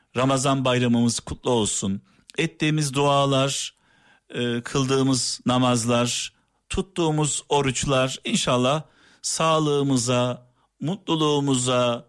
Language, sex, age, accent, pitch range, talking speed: Turkish, male, 50-69, native, 120-150 Hz, 65 wpm